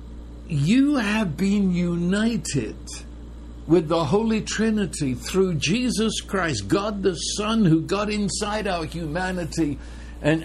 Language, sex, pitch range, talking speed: English, male, 155-225 Hz, 115 wpm